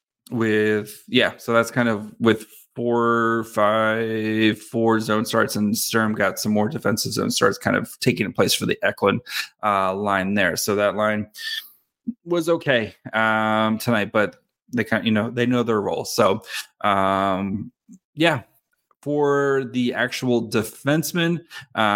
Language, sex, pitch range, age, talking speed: English, male, 105-125 Hz, 20-39, 150 wpm